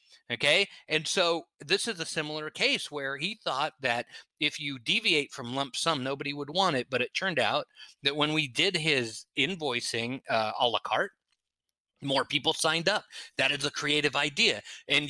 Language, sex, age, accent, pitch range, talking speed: English, male, 30-49, American, 135-190 Hz, 185 wpm